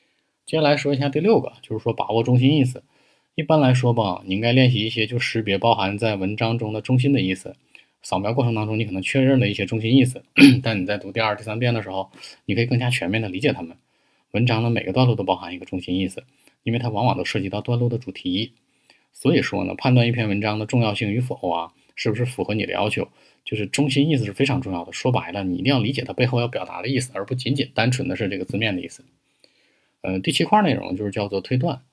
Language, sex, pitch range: Chinese, male, 100-125 Hz